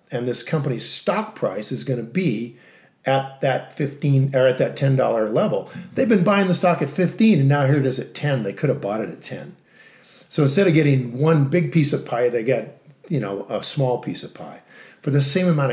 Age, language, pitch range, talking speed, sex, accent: 40-59, English, 135-170 Hz, 235 wpm, male, American